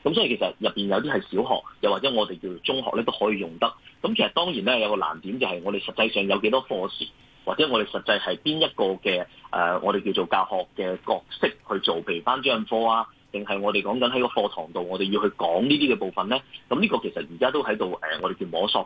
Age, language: 30-49, Chinese